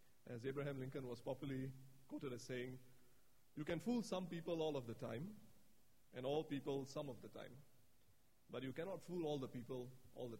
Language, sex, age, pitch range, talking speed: English, male, 30-49, 125-155 Hz, 190 wpm